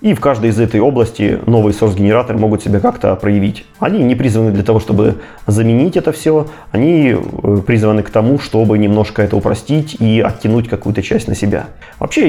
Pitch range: 100-115 Hz